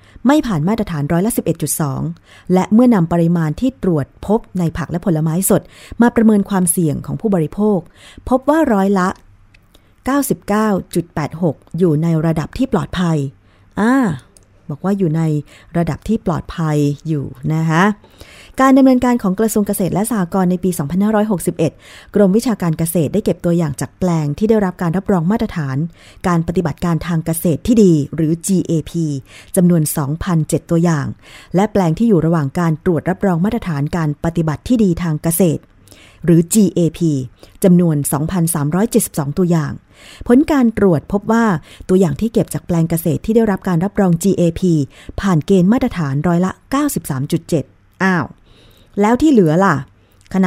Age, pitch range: 20-39, 155-200 Hz